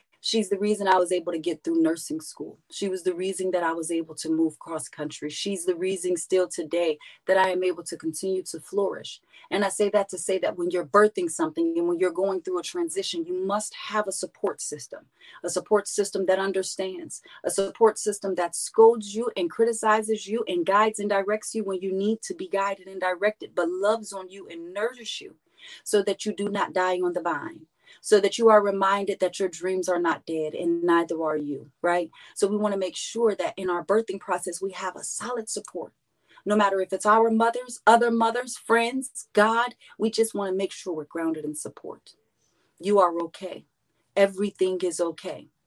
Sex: female